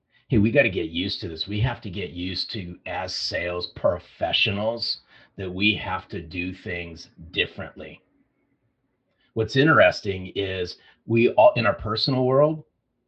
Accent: American